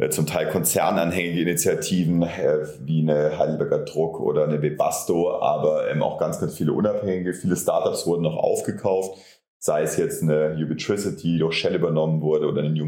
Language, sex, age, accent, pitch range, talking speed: German, male, 30-49, German, 75-90 Hz, 170 wpm